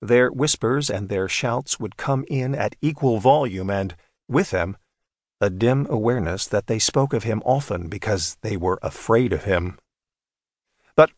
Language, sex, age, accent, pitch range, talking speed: English, male, 50-69, American, 100-130 Hz, 160 wpm